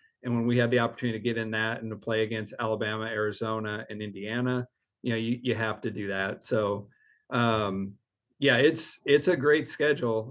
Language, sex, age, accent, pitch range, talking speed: English, male, 40-59, American, 110-125 Hz, 200 wpm